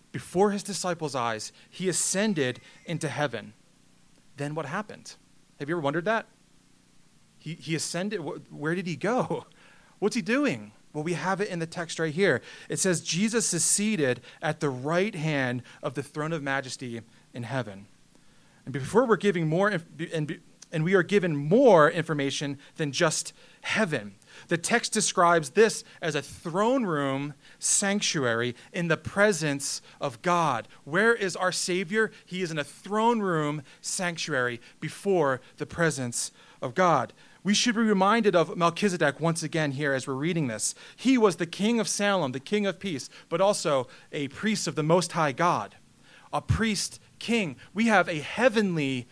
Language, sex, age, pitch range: English, male, 30-49, 145-200 Hz